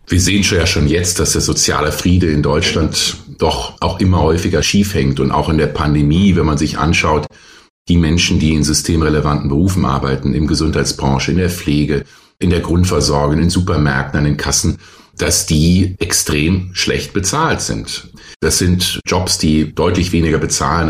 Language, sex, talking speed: German, male, 165 wpm